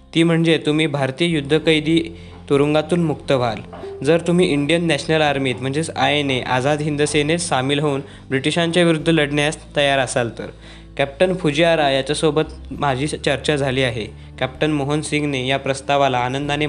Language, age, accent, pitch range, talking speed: Marathi, 20-39, native, 135-155 Hz, 145 wpm